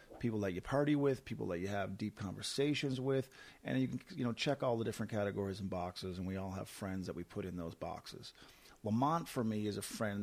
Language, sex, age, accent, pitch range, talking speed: English, male, 40-59, American, 100-120 Hz, 240 wpm